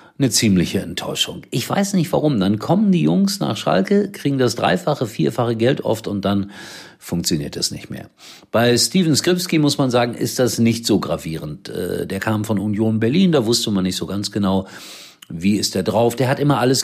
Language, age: German, 50-69